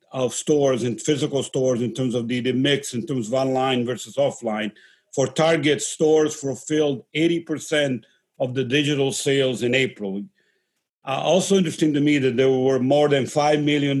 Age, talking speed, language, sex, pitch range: 50-69, 170 wpm, English, male, 125-140 Hz